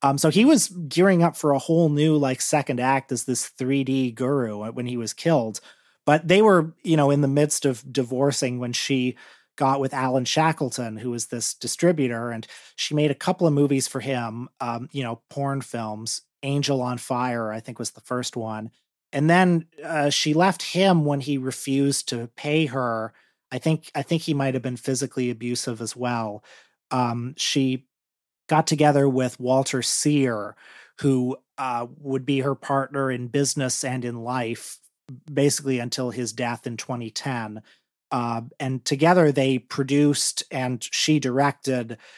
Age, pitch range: 30-49, 125-145 Hz